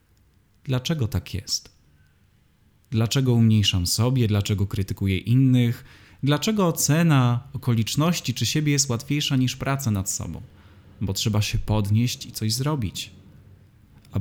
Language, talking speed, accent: Polish, 120 wpm, native